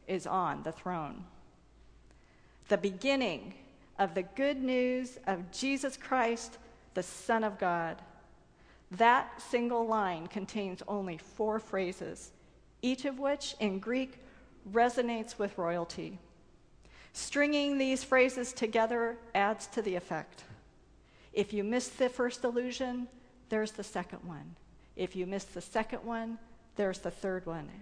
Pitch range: 180-245 Hz